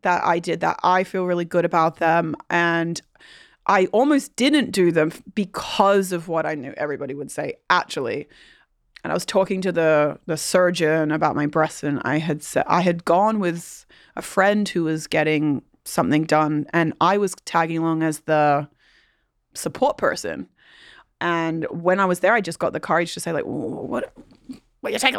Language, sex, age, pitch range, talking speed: English, female, 20-39, 160-205 Hz, 185 wpm